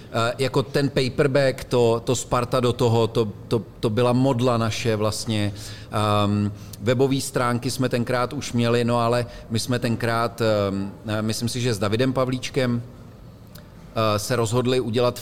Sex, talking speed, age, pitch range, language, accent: male, 135 wpm, 40-59, 105-125 Hz, Czech, native